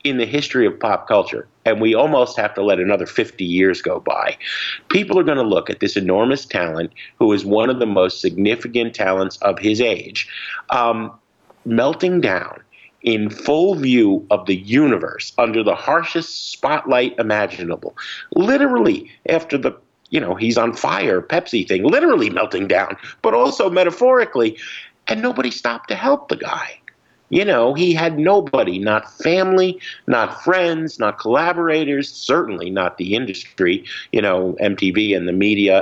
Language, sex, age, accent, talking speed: English, male, 50-69, American, 160 wpm